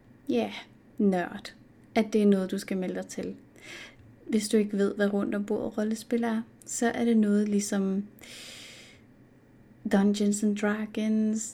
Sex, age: female, 30-49